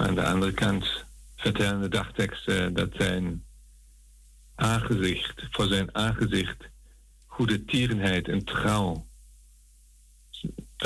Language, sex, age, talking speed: Dutch, male, 50-69, 100 wpm